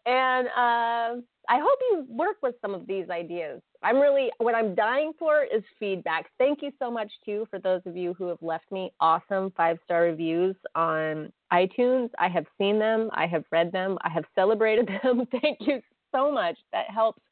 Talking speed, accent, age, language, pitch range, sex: 190 wpm, American, 30-49, English, 170-235 Hz, female